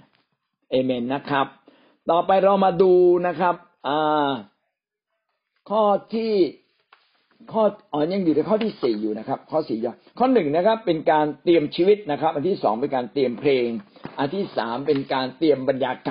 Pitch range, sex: 135-180 Hz, male